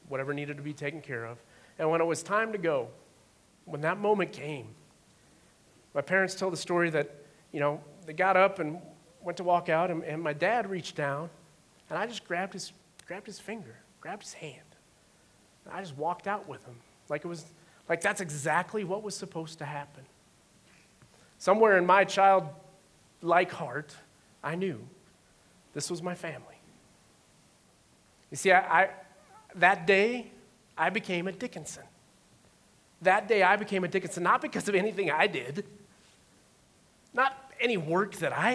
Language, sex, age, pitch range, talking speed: English, male, 30-49, 150-195 Hz, 165 wpm